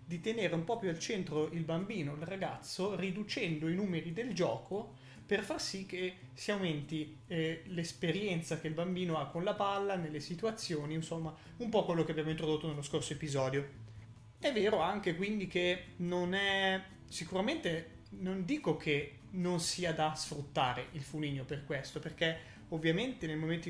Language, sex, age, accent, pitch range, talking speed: Italian, male, 30-49, native, 150-185 Hz, 165 wpm